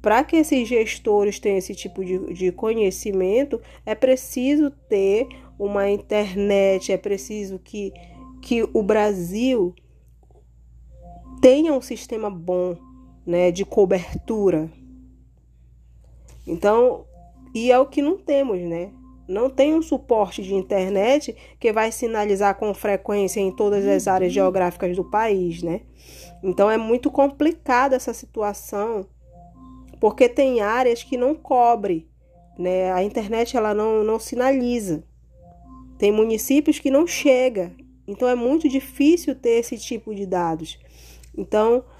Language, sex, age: Portuguese, female, 20-39